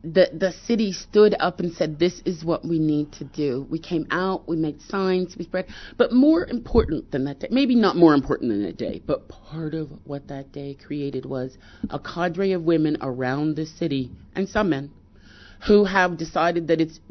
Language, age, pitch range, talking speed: English, 40-59, 145-185 Hz, 205 wpm